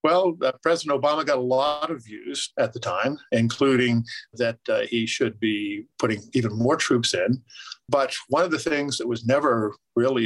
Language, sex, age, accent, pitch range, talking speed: English, male, 50-69, American, 115-135 Hz, 185 wpm